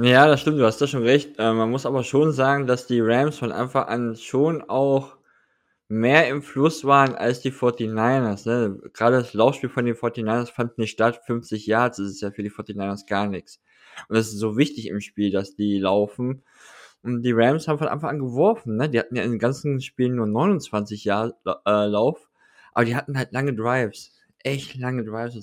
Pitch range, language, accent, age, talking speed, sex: 115-150 Hz, German, German, 20-39, 210 wpm, male